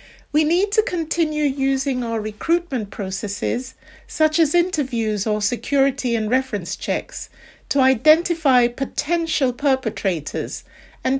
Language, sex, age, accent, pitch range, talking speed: English, female, 60-79, British, 210-295 Hz, 115 wpm